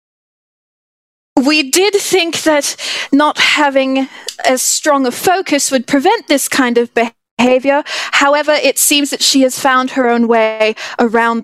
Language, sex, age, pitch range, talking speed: English, female, 30-49, 230-295 Hz, 140 wpm